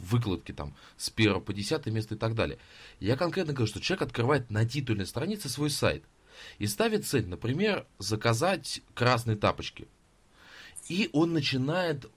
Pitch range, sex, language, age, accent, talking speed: 100-125 Hz, male, Russian, 20-39, native, 155 wpm